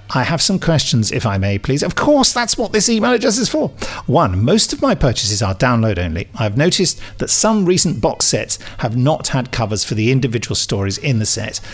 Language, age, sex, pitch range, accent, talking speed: English, 50-69, male, 105-135 Hz, British, 220 wpm